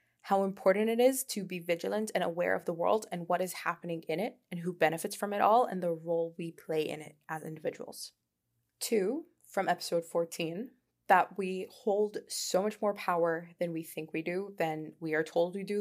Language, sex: English, female